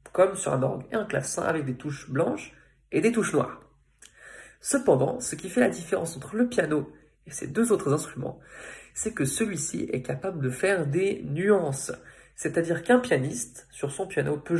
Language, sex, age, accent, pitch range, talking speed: French, male, 20-39, French, 145-195 Hz, 185 wpm